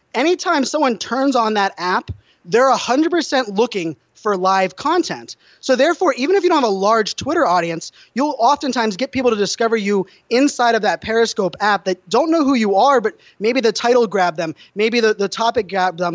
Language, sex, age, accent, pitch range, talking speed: English, male, 20-39, American, 195-240 Hz, 195 wpm